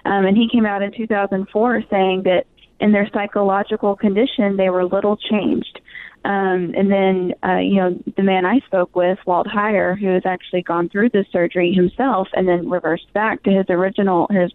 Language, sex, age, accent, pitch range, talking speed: English, female, 20-39, American, 180-205 Hz, 190 wpm